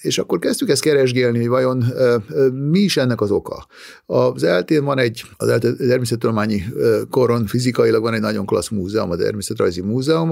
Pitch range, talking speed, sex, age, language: 115-135 Hz, 175 wpm, male, 60-79, Hungarian